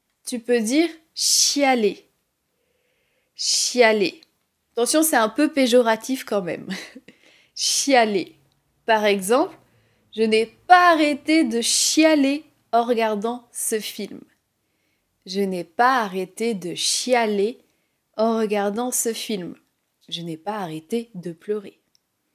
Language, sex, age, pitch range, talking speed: French, female, 30-49, 210-310 Hz, 130 wpm